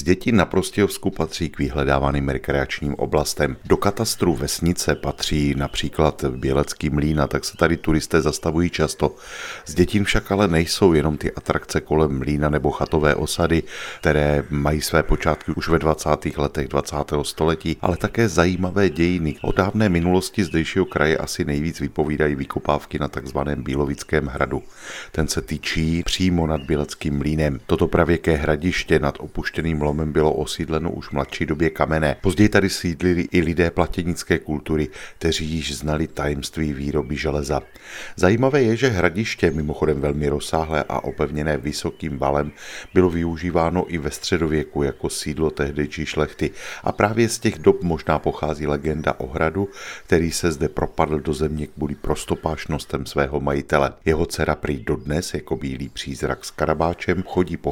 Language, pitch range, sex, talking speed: Czech, 75-85 Hz, male, 150 wpm